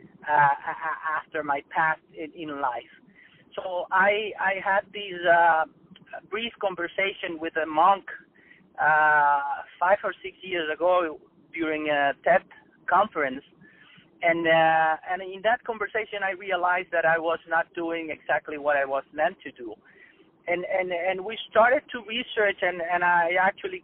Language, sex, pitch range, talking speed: English, male, 165-205 Hz, 145 wpm